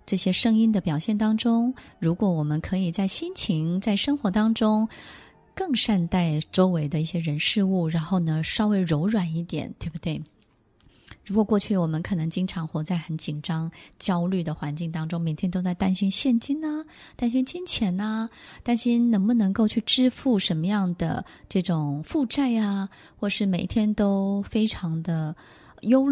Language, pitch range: Chinese, 165-220 Hz